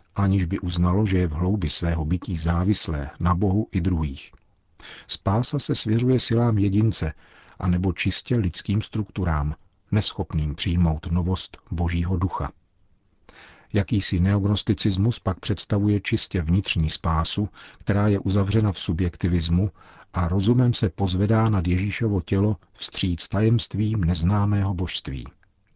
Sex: male